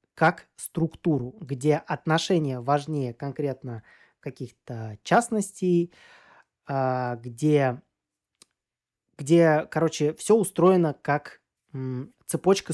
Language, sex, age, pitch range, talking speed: Russian, male, 20-39, 140-180 Hz, 70 wpm